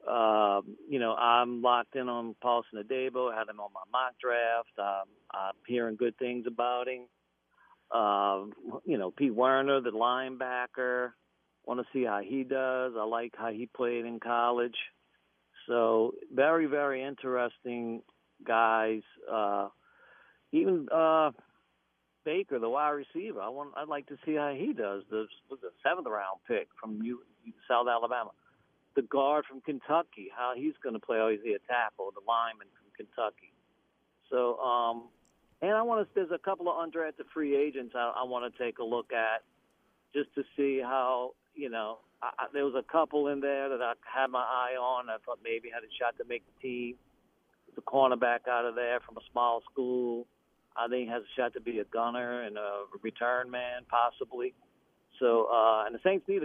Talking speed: 185 wpm